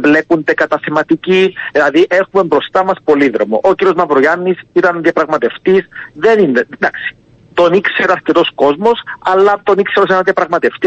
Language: Greek